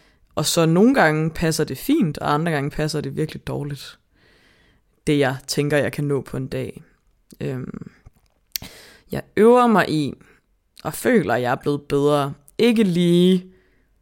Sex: female